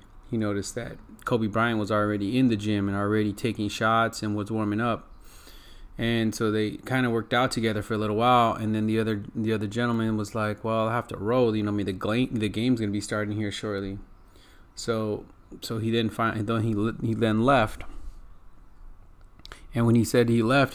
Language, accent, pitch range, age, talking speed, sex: English, American, 100-115 Hz, 30-49, 215 wpm, male